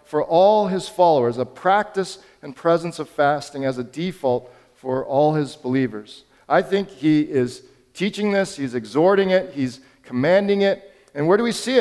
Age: 40-59